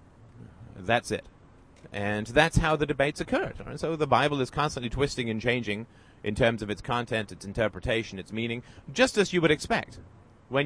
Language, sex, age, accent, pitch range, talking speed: English, male, 30-49, American, 115-140 Hz, 175 wpm